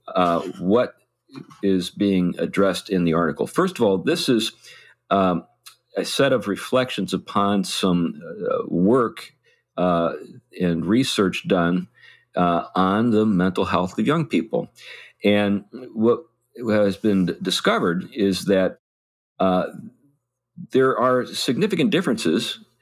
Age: 50-69